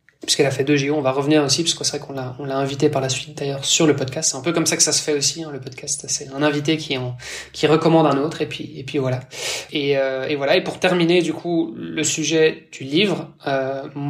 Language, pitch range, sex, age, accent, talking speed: French, 140-155 Hz, male, 20-39, French, 280 wpm